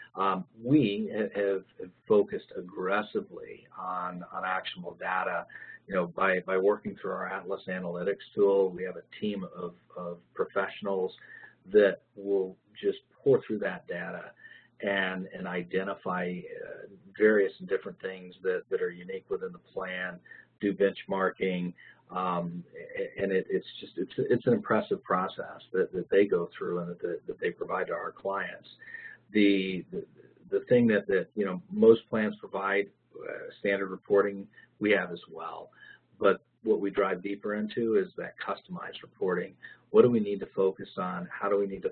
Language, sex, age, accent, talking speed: English, male, 40-59, American, 160 wpm